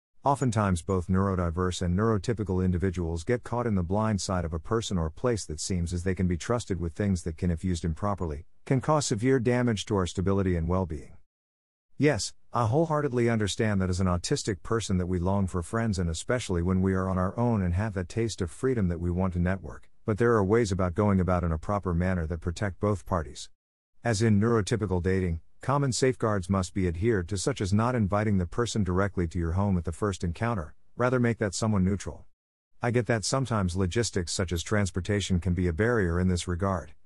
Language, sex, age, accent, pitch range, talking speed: English, male, 50-69, American, 90-115 Hz, 215 wpm